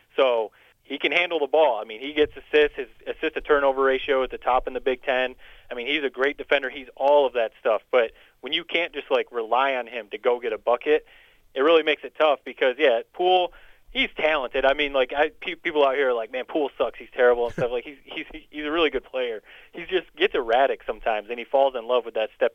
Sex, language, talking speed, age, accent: male, English, 255 wpm, 30-49, American